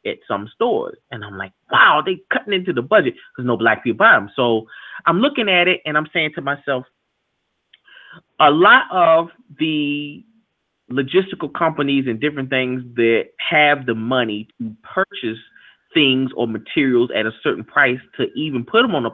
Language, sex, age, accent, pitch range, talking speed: English, male, 30-49, American, 110-170 Hz, 175 wpm